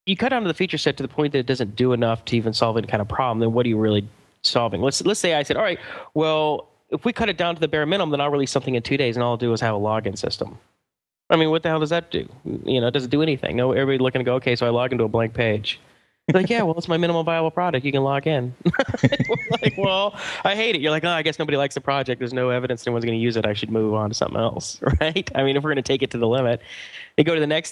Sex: male